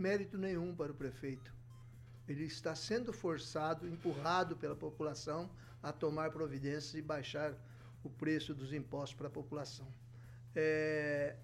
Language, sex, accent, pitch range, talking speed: Portuguese, male, Brazilian, 140-200 Hz, 130 wpm